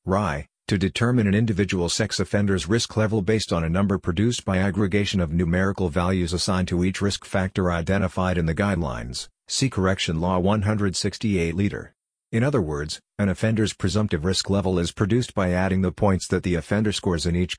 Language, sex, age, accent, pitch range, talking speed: English, male, 50-69, American, 90-105 Hz, 175 wpm